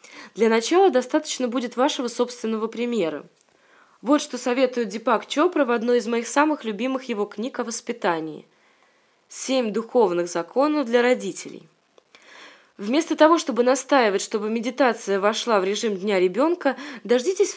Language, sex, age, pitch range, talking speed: Russian, female, 20-39, 220-275 Hz, 135 wpm